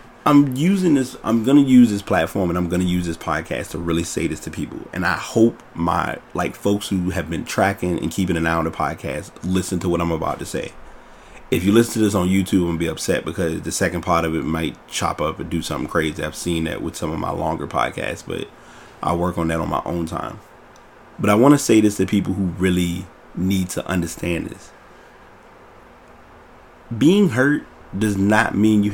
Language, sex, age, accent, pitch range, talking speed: English, male, 30-49, American, 85-110 Hz, 220 wpm